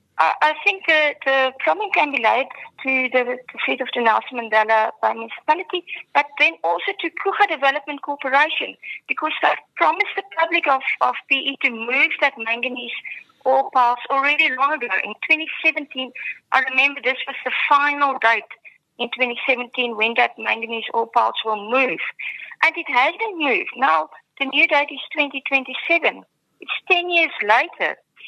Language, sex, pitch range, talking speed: English, female, 250-320 Hz, 160 wpm